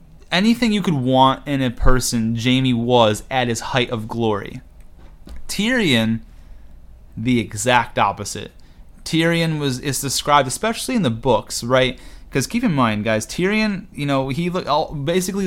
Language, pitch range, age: English, 120-145 Hz, 30-49